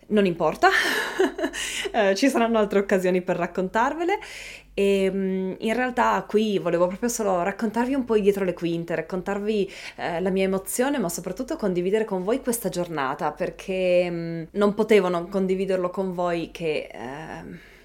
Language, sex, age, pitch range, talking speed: Italian, female, 20-39, 170-220 Hz, 140 wpm